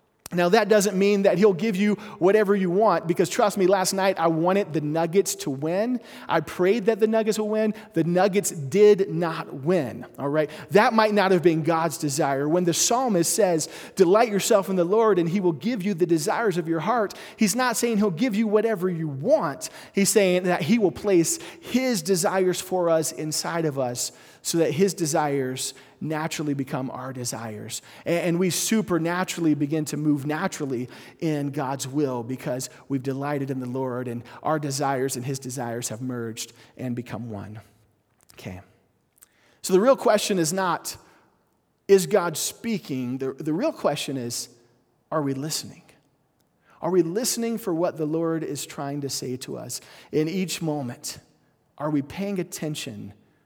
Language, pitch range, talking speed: English, 140-195 Hz, 175 wpm